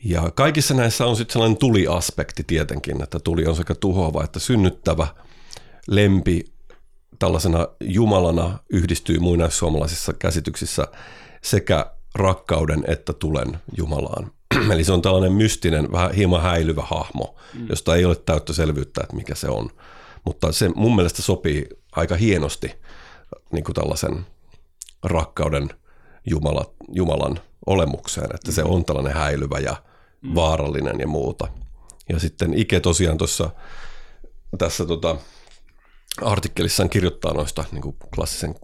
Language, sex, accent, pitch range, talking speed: Finnish, male, native, 80-95 Hz, 125 wpm